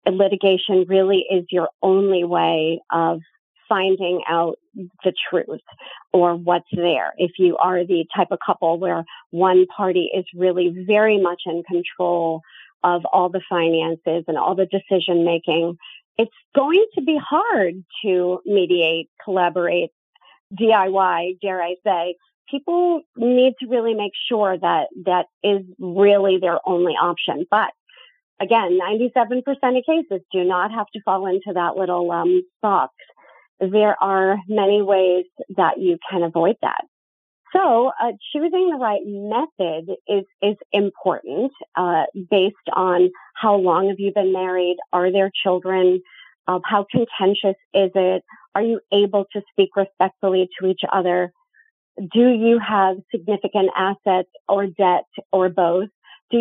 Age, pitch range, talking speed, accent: 40-59, 180-210 Hz, 140 wpm, American